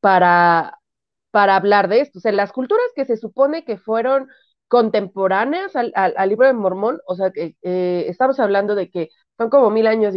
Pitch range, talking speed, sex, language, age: 180-260 Hz, 205 wpm, female, Spanish, 30-49